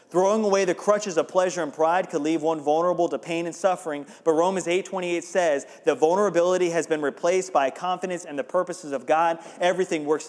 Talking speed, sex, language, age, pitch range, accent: 200 wpm, male, English, 30-49, 150-180 Hz, American